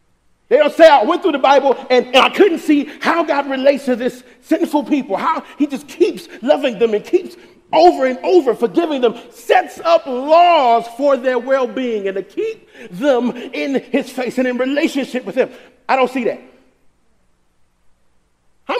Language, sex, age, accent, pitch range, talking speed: English, male, 40-59, American, 225-310 Hz, 180 wpm